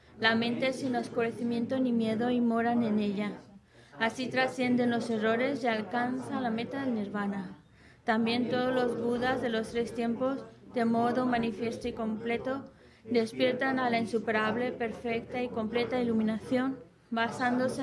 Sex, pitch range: female, 220-245 Hz